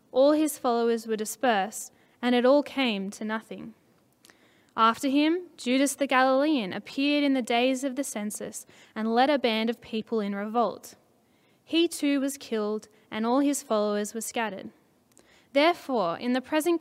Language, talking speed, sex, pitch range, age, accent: English, 160 wpm, female, 220-275 Hz, 10-29, Australian